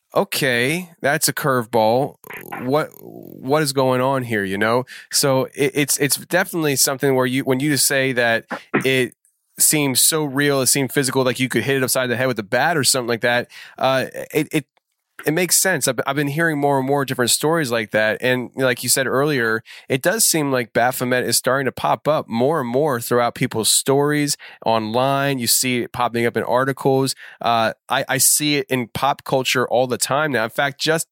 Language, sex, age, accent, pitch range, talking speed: English, male, 20-39, American, 120-145 Hz, 205 wpm